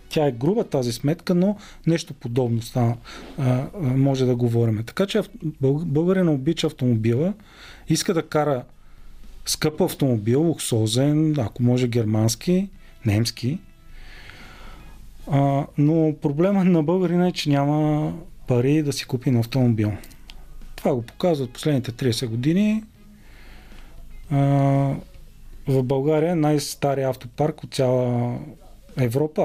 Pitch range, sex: 125-165 Hz, male